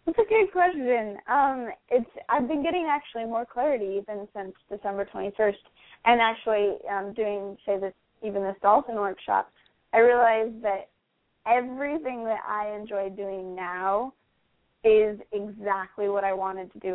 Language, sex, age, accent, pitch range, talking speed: English, female, 20-39, American, 200-250 Hz, 150 wpm